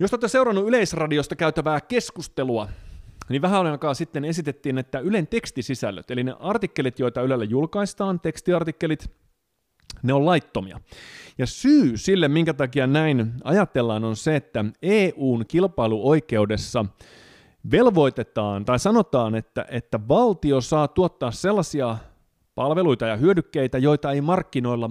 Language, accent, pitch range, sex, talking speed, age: Finnish, native, 120-165 Hz, male, 120 wpm, 30-49